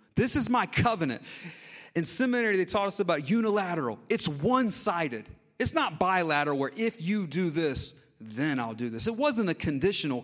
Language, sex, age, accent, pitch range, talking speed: English, male, 30-49, American, 145-205 Hz, 170 wpm